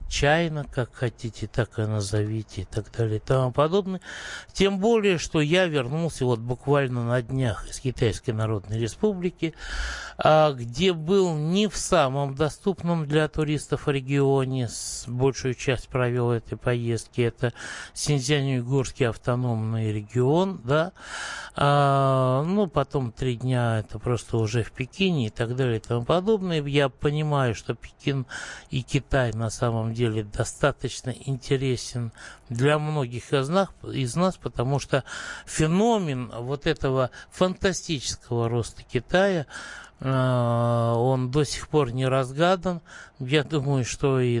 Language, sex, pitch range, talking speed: Russian, male, 120-150 Hz, 125 wpm